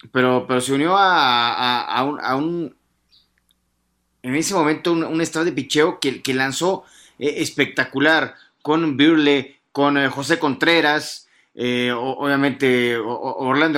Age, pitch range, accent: 30-49, 125-155 Hz, Mexican